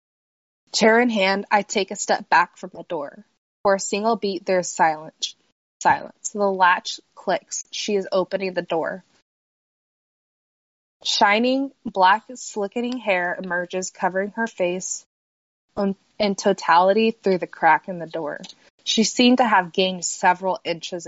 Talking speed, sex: 140 wpm, female